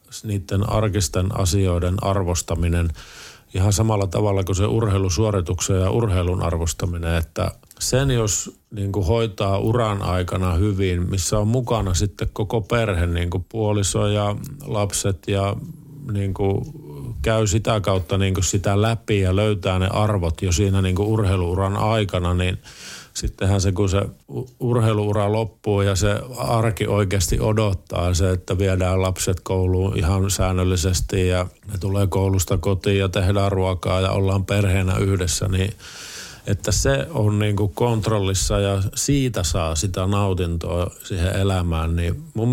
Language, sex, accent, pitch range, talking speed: Finnish, male, native, 95-105 Hz, 135 wpm